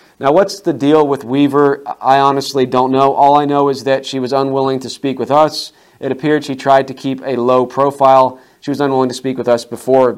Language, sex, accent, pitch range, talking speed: English, male, American, 125-145 Hz, 230 wpm